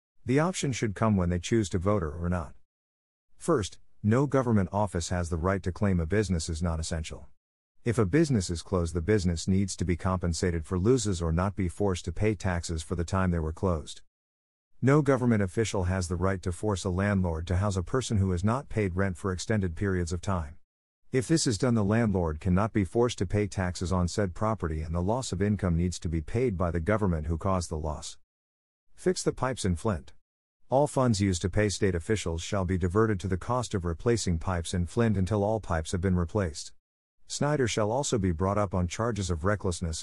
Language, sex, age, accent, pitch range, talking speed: English, male, 50-69, American, 85-105 Hz, 215 wpm